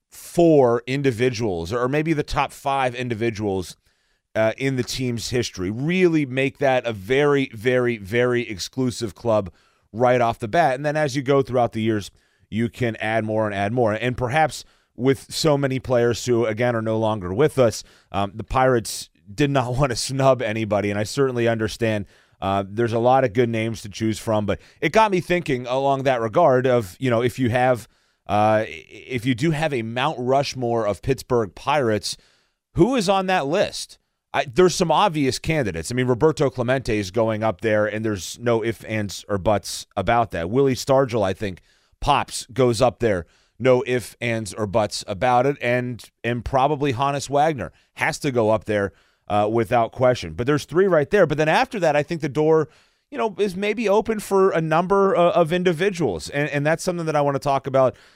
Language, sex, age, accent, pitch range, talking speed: English, male, 30-49, American, 110-140 Hz, 195 wpm